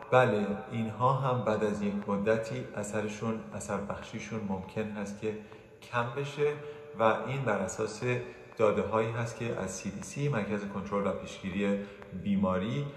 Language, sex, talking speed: Persian, male, 140 wpm